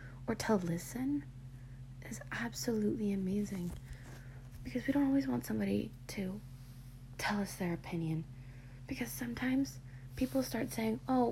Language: English